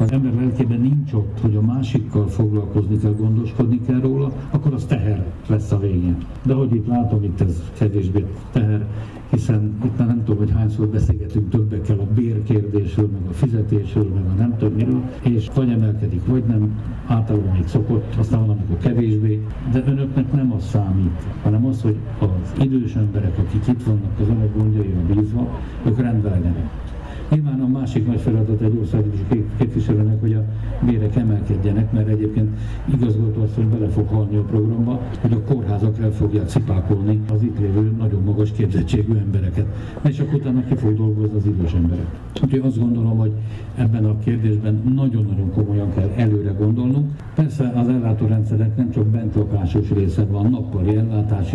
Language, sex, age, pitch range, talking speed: Hungarian, male, 60-79, 105-120 Hz, 170 wpm